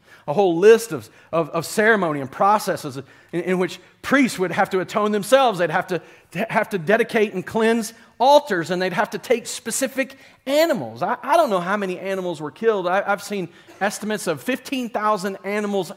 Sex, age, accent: male, 40-59, American